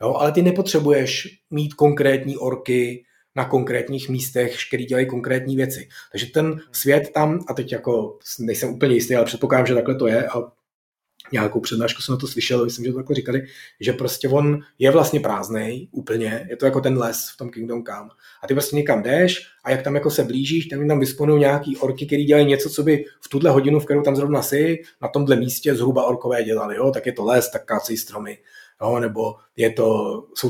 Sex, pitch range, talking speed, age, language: male, 120-155 Hz, 210 wpm, 30-49, Czech